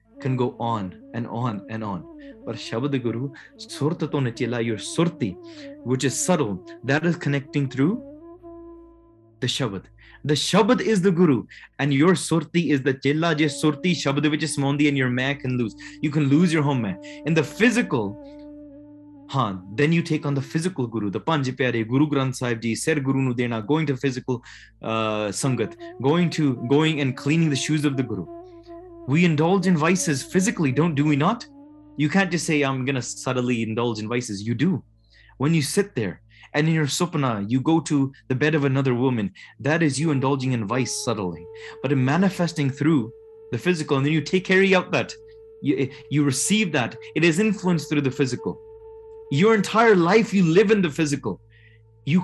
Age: 20-39